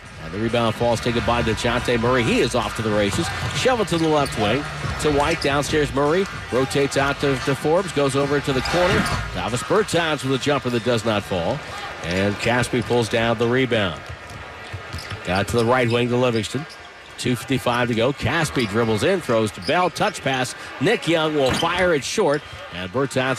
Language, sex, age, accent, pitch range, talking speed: English, male, 50-69, American, 110-140 Hz, 190 wpm